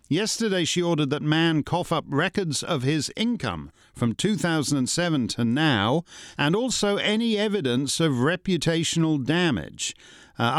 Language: English